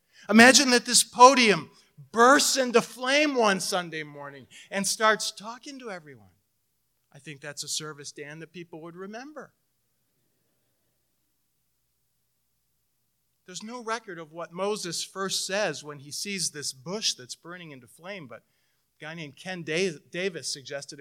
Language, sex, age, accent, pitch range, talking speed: English, male, 40-59, American, 155-200 Hz, 140 wpm